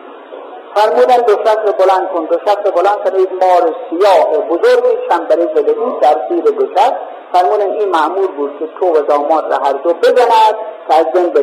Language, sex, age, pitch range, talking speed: Persian, male, 50-69, 195-280 Hz, 180 wpm